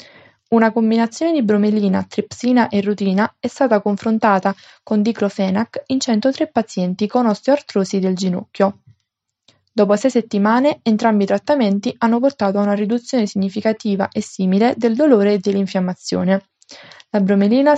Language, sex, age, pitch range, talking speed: Italian, female, 20-39, 195-230 Hz, 130 wpm